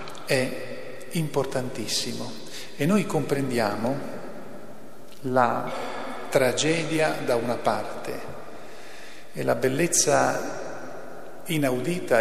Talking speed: 70 wpm